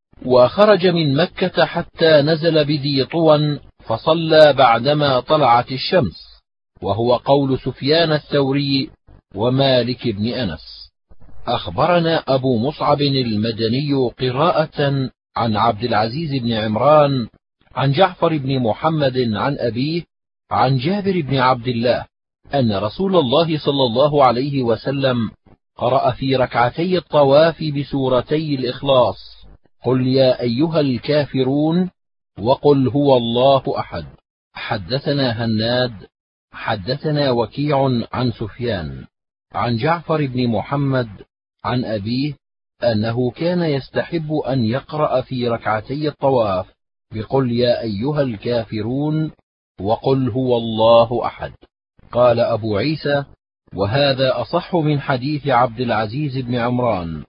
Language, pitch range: Arabic, 120-150 Hz